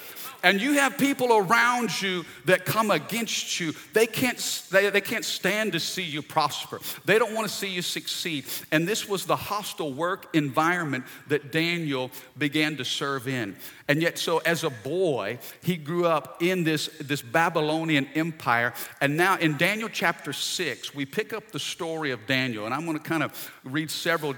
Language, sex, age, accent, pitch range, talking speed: English, male, 50-69, American, 130-170 Hz, 185 wpm